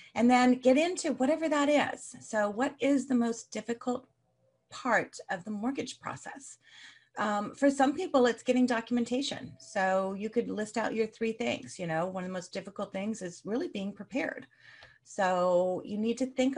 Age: 30-49